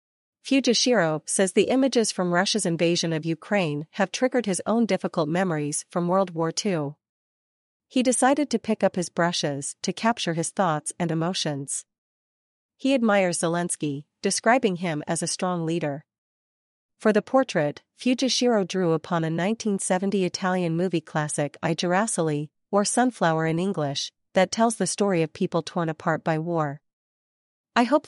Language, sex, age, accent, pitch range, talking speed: English, female, 40-59, American, 160-205 Hz, 150 wpm